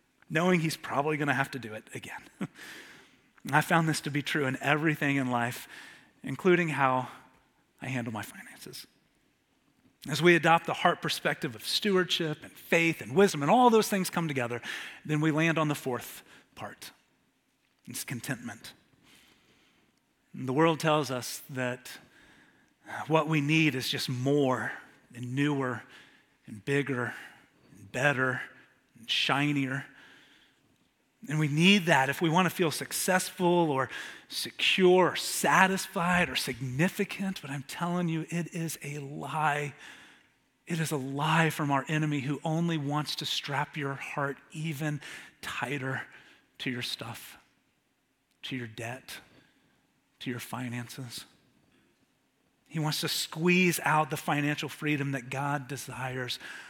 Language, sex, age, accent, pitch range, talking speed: English, male, 30-49, American, 135-165 Hz, 140 wpm